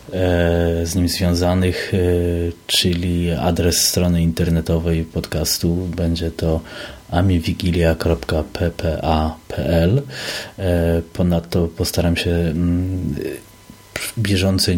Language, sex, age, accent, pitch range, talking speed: Polish, male, 30-49, native, 85-95 Hz, 60 wpm